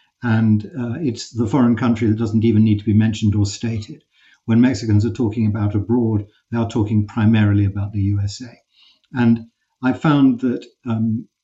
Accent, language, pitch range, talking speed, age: British, English, 110-140 Hz, 175 wpm, 50-69